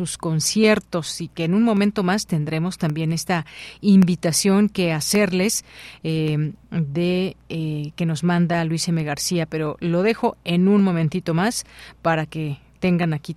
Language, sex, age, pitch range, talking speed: Spanish, female, 40-59, 160-185 Hz, 155 wpm